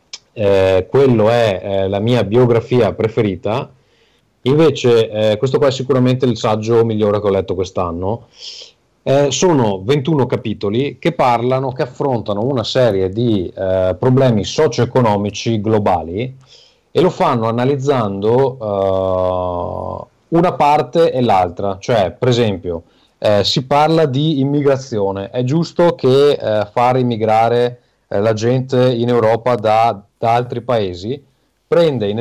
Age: 30-49